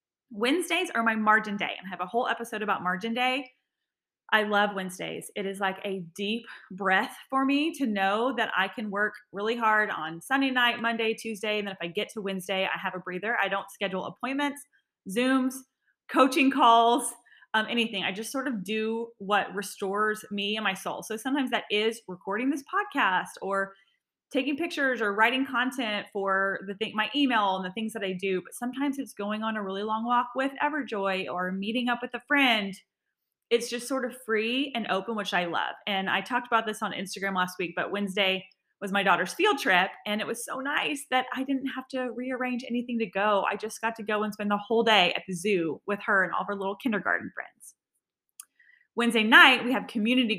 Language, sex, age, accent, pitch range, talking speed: English, female, 20-39, American, 195-250 Hz, 210 wpm